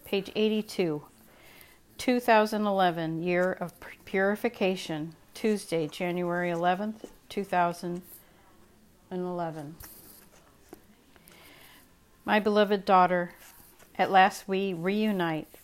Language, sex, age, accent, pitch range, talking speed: English, female, 40-59, American, 165-195 Hz, 65 wpm